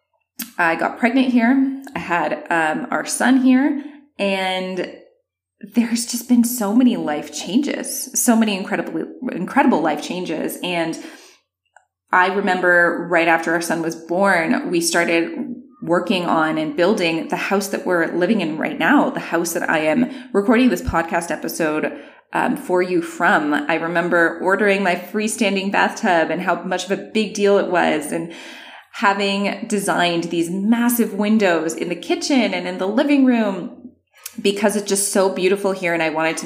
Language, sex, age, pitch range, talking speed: English, female, 20-39, 175-235 Hz, 165 wpm